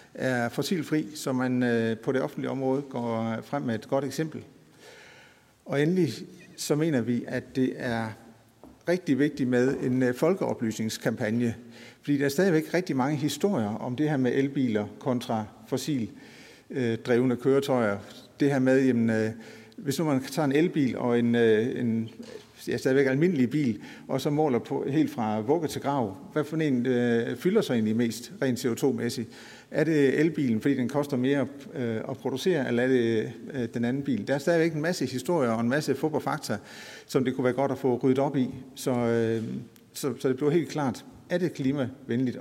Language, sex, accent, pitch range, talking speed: Danish, male, native, 120-145 Hz, 185 wpm